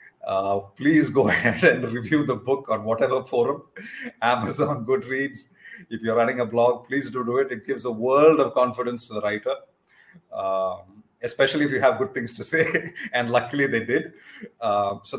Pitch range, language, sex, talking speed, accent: 115-135 Hz, Hindi, male, 190 wpm, native